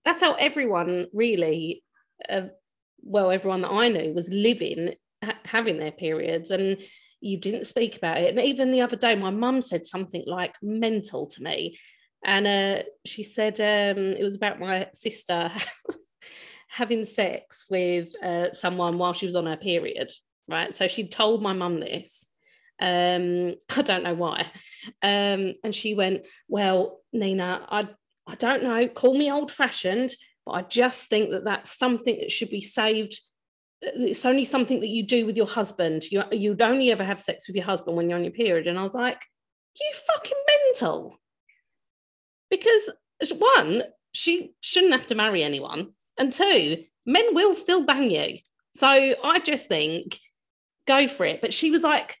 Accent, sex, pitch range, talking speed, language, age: British, female, 185-255 Hz, 170 wpm, English, 30-49